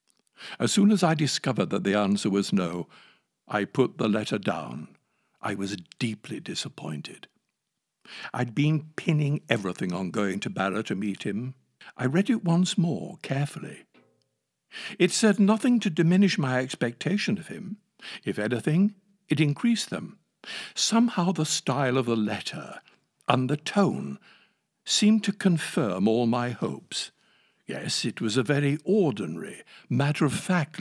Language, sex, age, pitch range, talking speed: English, male, 60-79, 125-190 Hz, 140 wpm